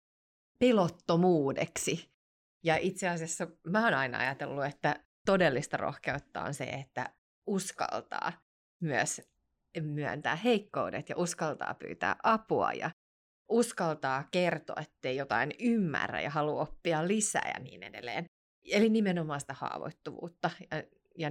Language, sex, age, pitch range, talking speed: Finnish, female, 30-49, 150-190 Hz, 115 wpm